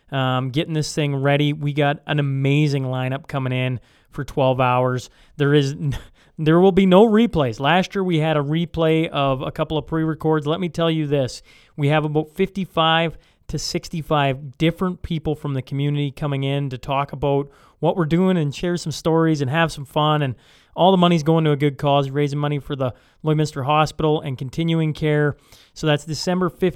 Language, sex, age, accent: English, male, 30-49, American